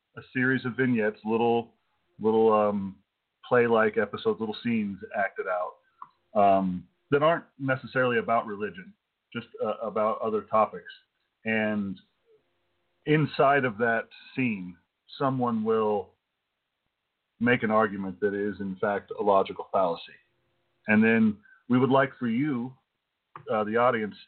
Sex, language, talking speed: male, English, 125 wpm